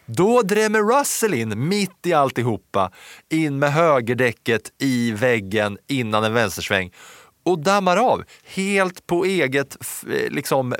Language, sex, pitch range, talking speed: English, male, 110-175 Hz, 120 wpm